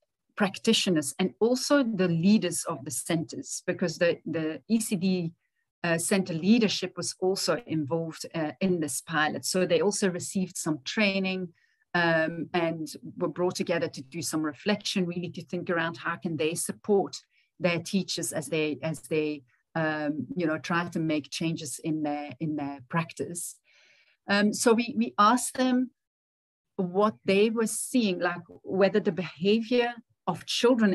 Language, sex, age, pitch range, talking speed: English, female, 40-59, 160-190 Hz, 155 wpm